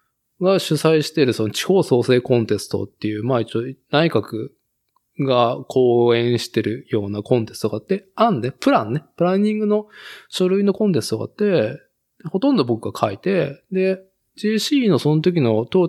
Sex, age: male, 20-39